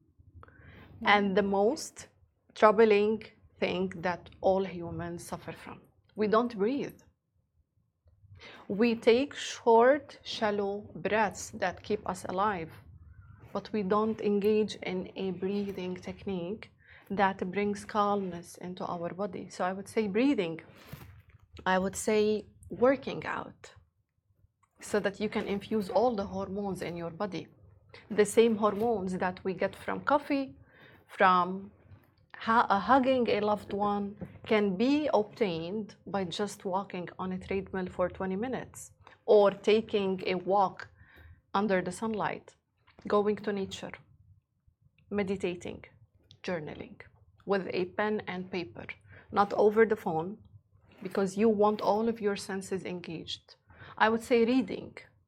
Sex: female